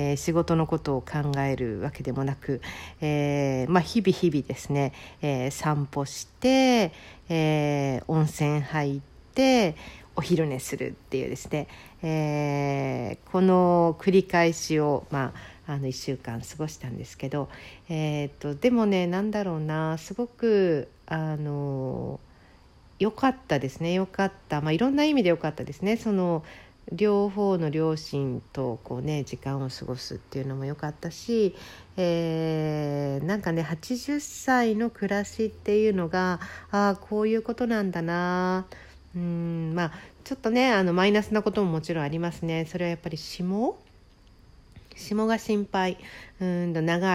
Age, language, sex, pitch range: 50-69, Japanese, female, 140-190 Hz